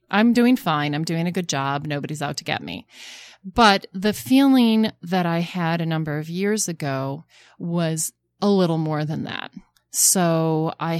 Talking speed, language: 175 wpm, English